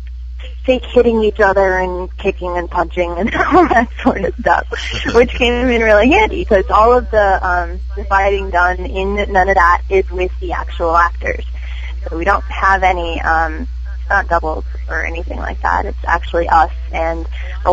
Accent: American